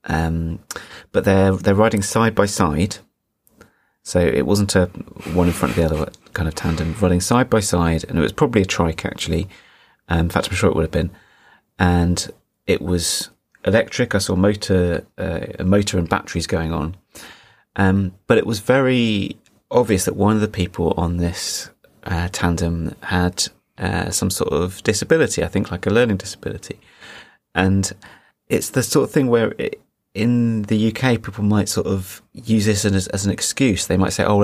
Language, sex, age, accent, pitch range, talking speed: English, male, 30-49, British, 90-110 Hz, 190 wpm